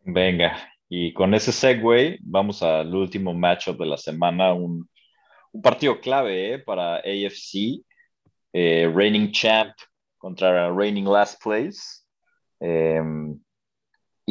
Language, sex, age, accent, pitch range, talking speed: Spanish, male, 30-49, Mexican, 85-100 Hz, 115 wpm